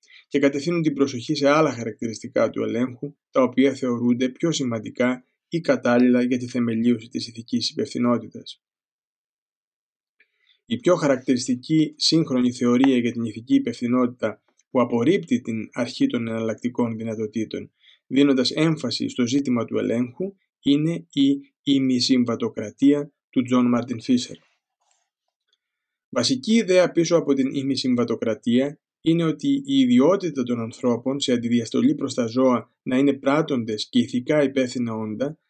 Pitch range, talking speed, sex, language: 120-145 Hz, 125 wpm, male, Greek